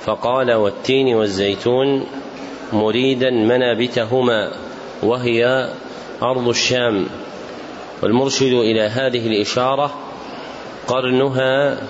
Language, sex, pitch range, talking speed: Arabic, male, 125-140 Hz, 65 wpm